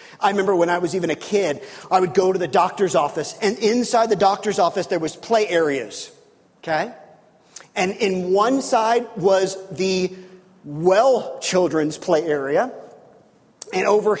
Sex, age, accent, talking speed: male, 40-59, American, 155 wpm